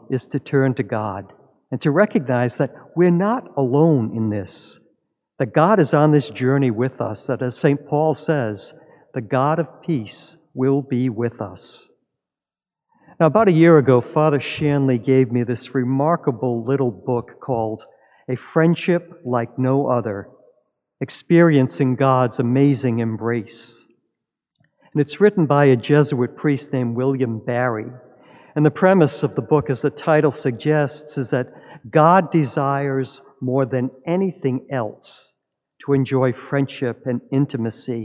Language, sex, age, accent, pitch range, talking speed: English, male, 50-69, American, 125-150 Hz, 145 wpm